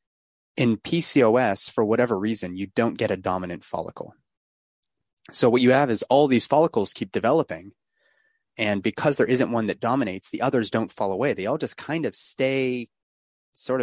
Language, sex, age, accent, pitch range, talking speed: English, male, 30-49, American, 95-125 Hz, 175 wpm